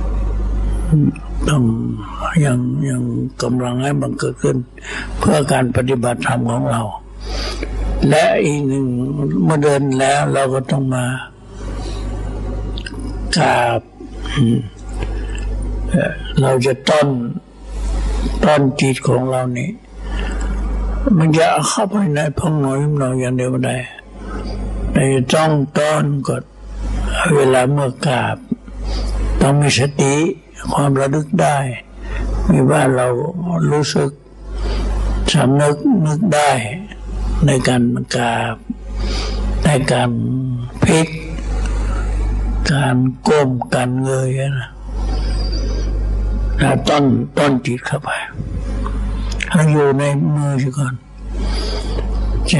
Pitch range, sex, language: 105-140 Hz, male, Thai